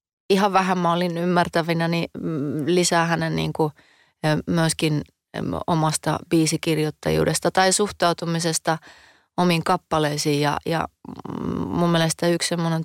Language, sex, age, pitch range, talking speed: Finnish, female, 30-49, 150-175 Hz, 105 wpm